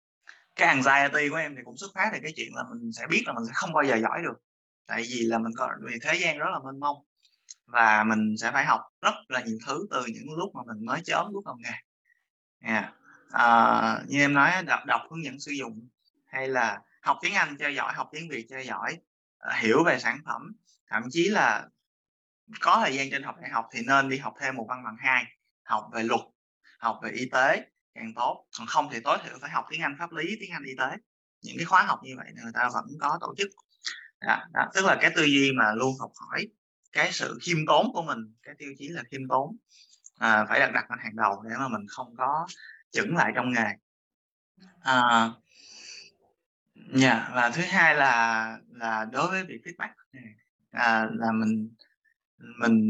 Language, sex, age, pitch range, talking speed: Vietnamese, male, 20-39, 115-160 Hz, 215 wpm